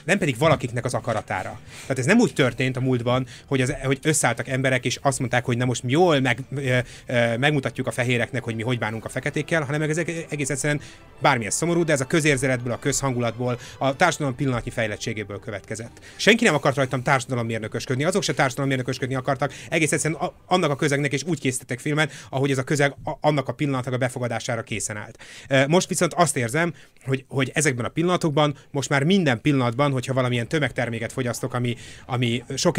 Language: Hungarian